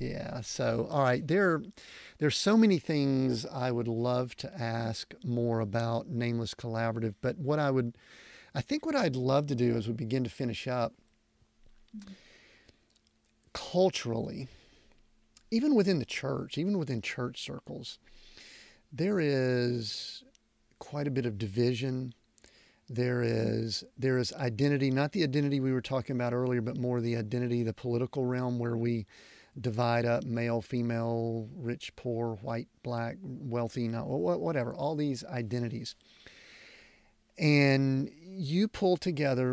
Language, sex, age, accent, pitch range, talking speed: English, male, 40-59, American, 115-140 Hz, 140 wpm